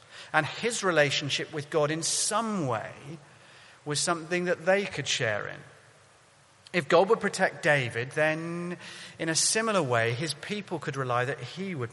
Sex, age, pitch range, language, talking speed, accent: male, 40-59, 130-170 Hz, English, 160 wpm, British